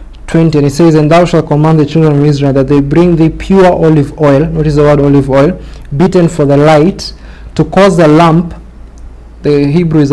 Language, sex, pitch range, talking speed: English, male, 150-190 Hz, 205 wpm